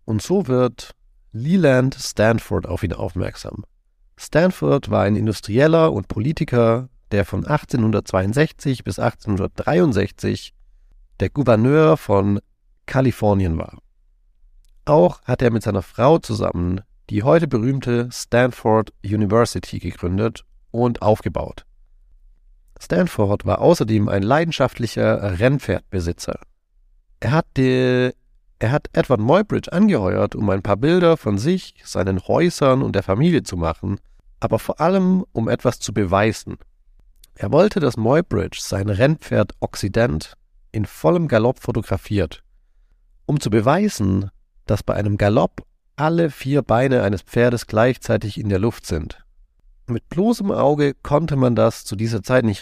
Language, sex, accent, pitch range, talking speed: English, male, German, 100-130 Hz, 125 wpm